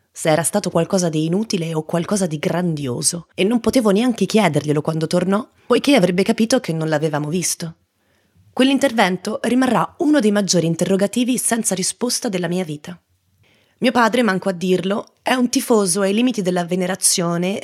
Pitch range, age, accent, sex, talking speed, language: 175-225 Hz, 30-49, native, female, 160 wpm, Italian